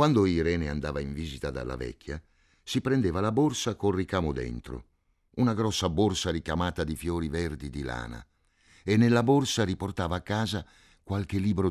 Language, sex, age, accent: Italian, male, 60-79, native